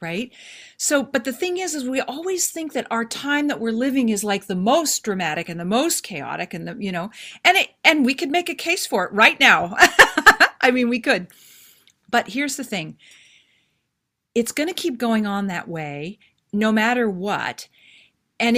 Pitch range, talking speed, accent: 185-275 Hz, 195 wpm, American